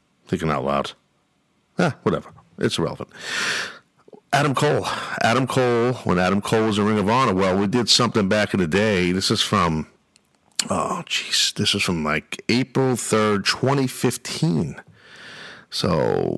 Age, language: 50-69, English